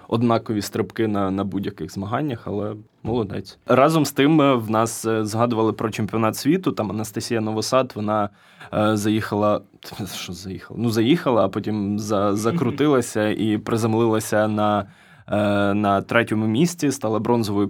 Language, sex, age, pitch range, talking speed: Ukrainian, male, 20-39, 105-120 Hz, 140 wpm